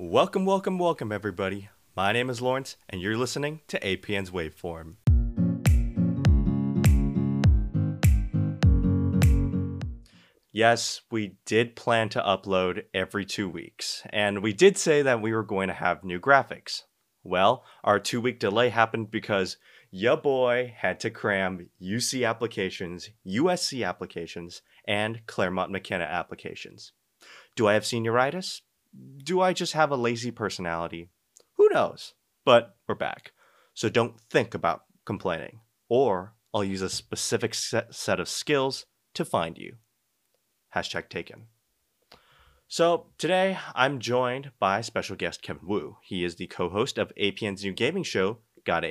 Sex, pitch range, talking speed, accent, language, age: male, 95-125 Hz, 130 wpm, American, English, 30-49